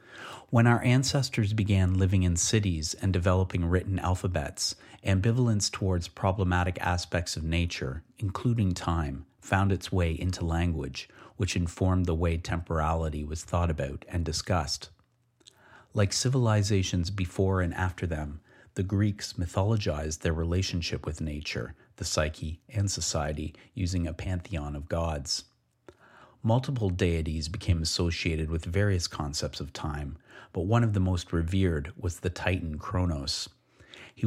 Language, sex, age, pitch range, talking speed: English, male, 30-49, 85-100 Hz, 135 wpm